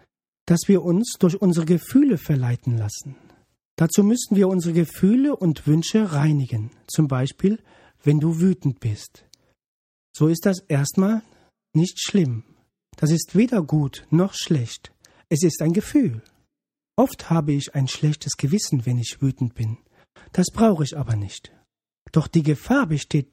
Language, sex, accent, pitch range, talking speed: German, male, German, 140-200 Hz, 145 wpm